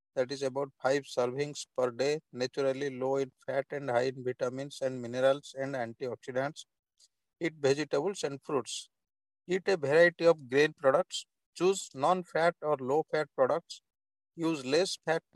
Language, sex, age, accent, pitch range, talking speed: English, male, 50-69, Indian, 135-170 Hz, 140 wpm